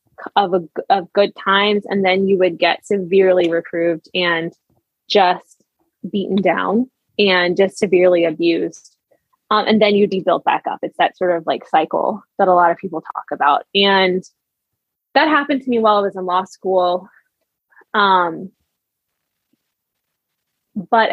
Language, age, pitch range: English, 20-39, 180-215 Hz